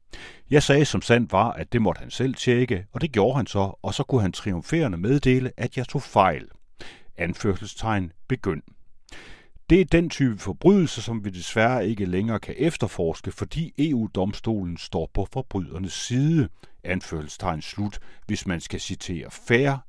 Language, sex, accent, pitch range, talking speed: Danish, male, native, 95-130 Hz, 160 wpm